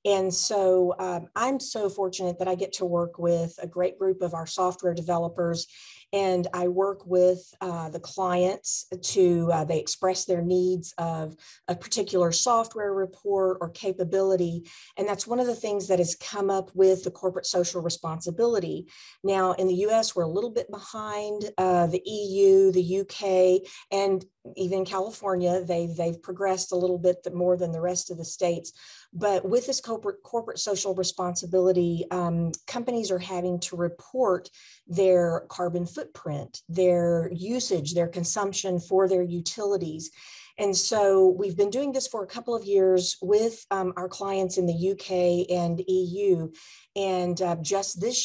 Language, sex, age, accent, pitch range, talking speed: English, female, 40-59, American, 175-195 Hz, 165 wpm